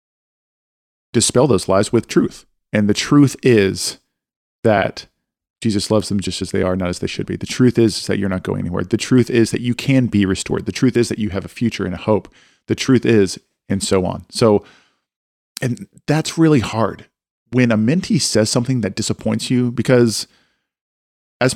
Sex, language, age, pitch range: male, English, 40-59, 100-125 Hz